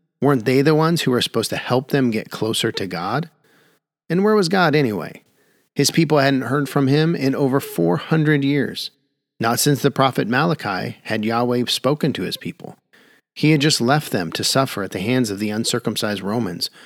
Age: 40-59